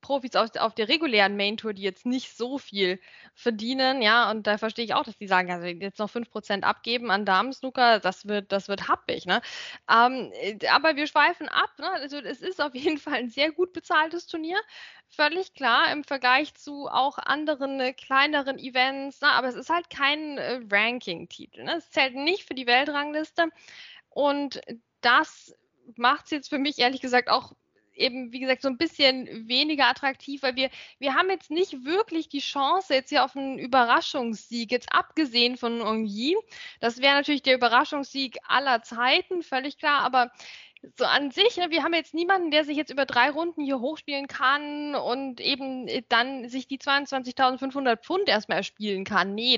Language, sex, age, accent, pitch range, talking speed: German, female, 10-29, German, 240-300 Hz, 180 wpm